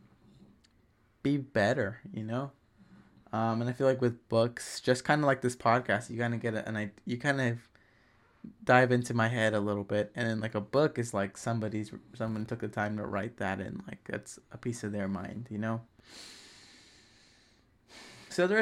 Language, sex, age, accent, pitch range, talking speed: English, male, 20-39, American, 110-130 Hz, 195 wpm